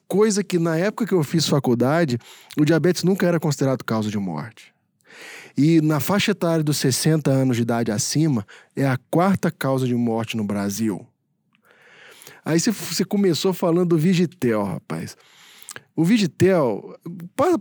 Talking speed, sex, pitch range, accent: 150 wpm, male, 140-200 Hz, Brazilian